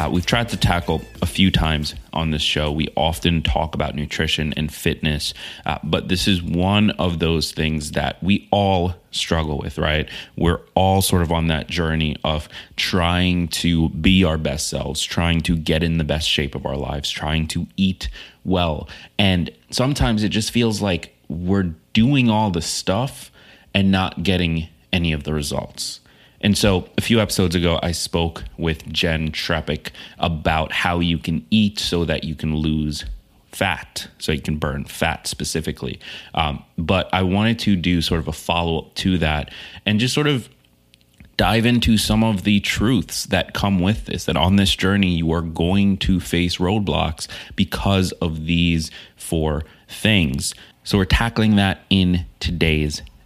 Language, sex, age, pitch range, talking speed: English, male, 30-49, 80-95 Hz, 175 wpm